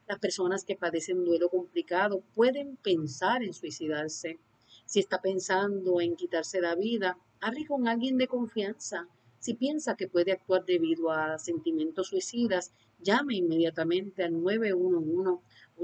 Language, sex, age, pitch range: Spanish, female, 40-59, 170-205 Hz